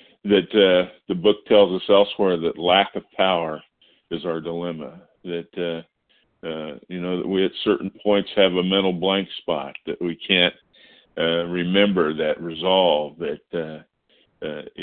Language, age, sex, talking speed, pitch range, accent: English, 50-69, male, 160 wpm, 80-95 Hz, American